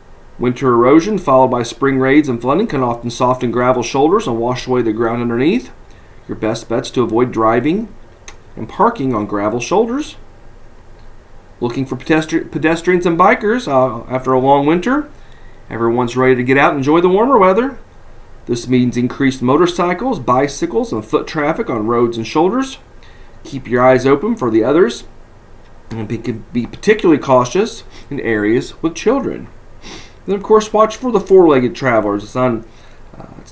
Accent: American